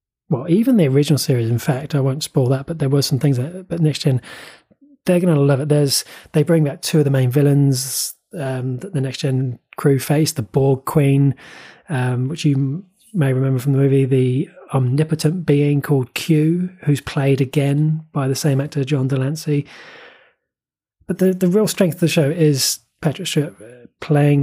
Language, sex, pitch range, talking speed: English, male, 130-155 Hz, 190 wpm